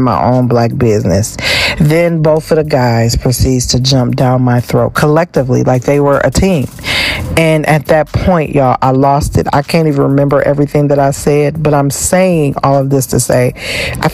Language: English